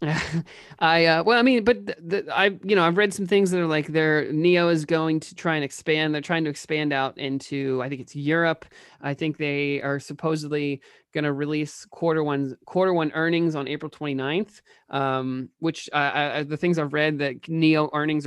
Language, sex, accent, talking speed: English, male, American, 205 wpm